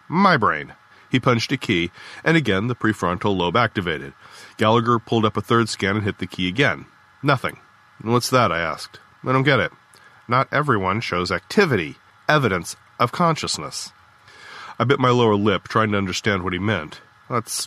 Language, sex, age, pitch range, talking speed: English, male, 40-59, 105-140 Hz, 175 wpm